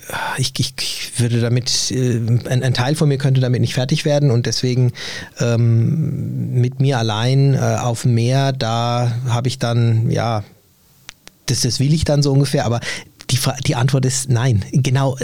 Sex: male